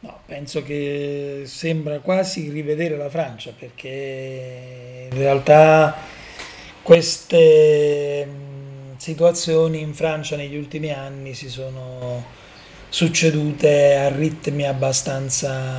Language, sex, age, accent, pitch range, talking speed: Italian, male, 30-49, native, 135-155 Hz, 90 wpm